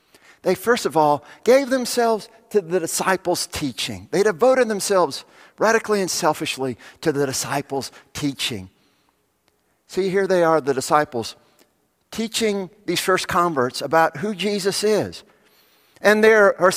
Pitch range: 145-205 Hz